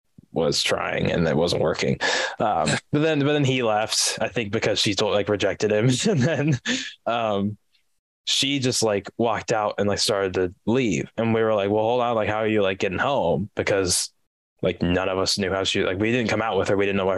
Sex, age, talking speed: male, 10-29, 235 wpm